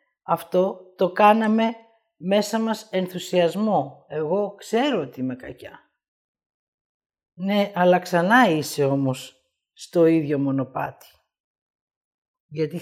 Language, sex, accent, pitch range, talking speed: Greek, female, native, 155-210 Hz, 95 wpm